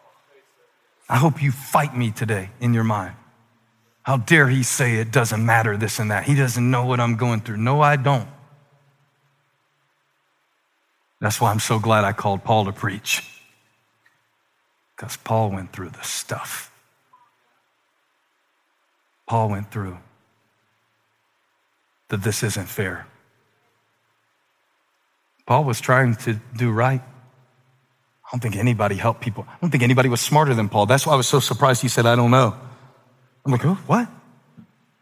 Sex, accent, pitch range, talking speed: male, American, 115-140 Hz, 145 wpm